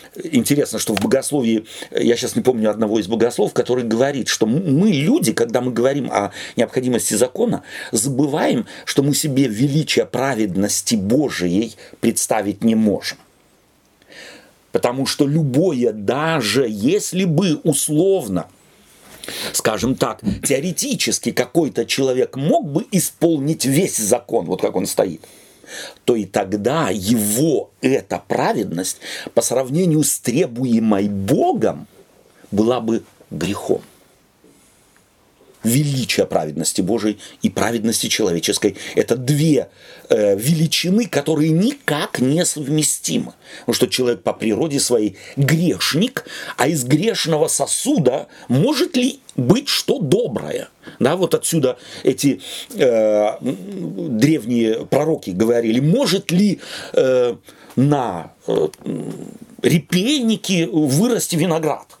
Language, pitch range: Russian, 115-165 Hz